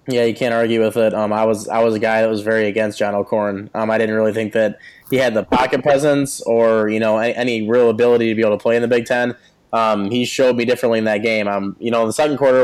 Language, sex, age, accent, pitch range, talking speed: English, male, 20-39, American, 110-130 Hz, 285 wpm